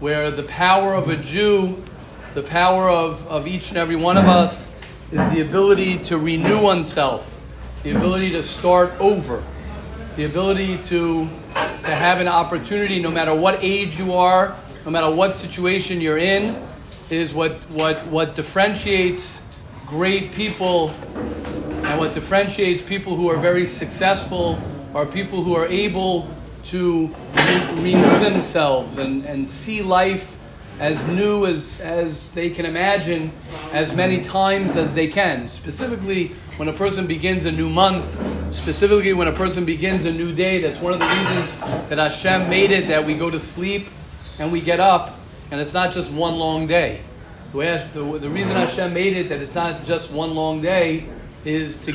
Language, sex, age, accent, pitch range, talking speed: English, male, 40-59, American, 155-185 Hz, 165 wpm